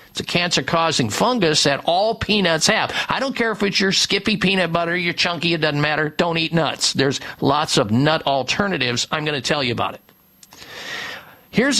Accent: American